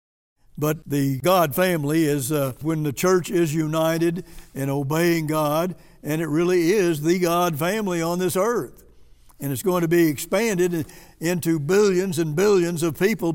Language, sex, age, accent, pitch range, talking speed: English, male, 60-79, American, 150-185 Hz, 160 wpm